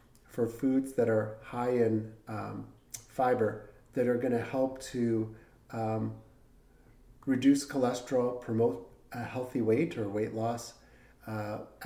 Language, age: English, 40-59